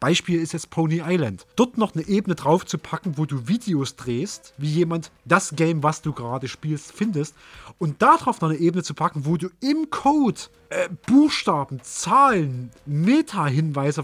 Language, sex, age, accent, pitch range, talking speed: German, male, 30-49, German, 160-235 Hz, 170 wpm